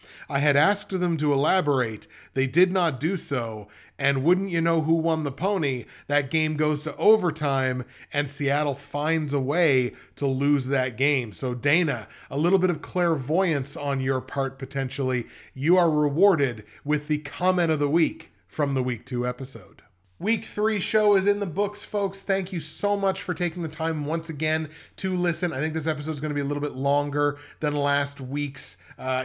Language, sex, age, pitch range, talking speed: English, male, 30-49, 135-165 Hz, 195 wpm